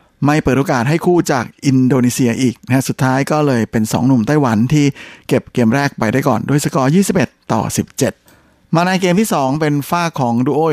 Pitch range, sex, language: 120-145 Hz, male, Thai